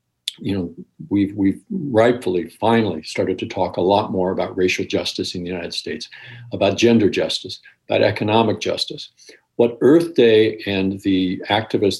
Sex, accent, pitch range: male, American, 95-115 Hz